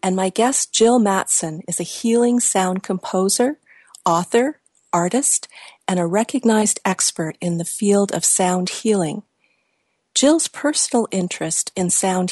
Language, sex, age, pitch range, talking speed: English, female, 50-69, 180-225 Hz, 130 wpm